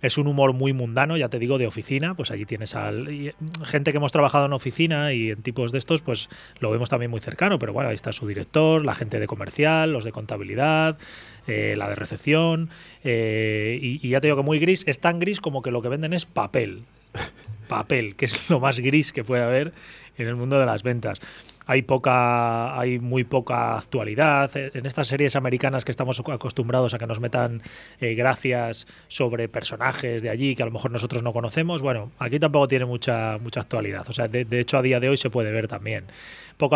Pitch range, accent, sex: 115-145 Hz, Spanish, male